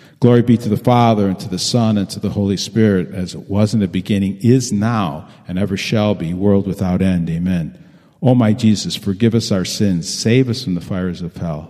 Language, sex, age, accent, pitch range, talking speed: English, male, 50-69, American, 95-125 Hz, 230 wpm